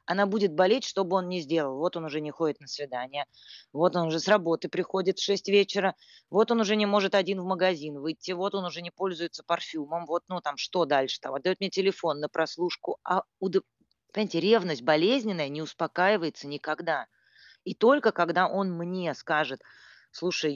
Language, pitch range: Russian, 145-190 Hz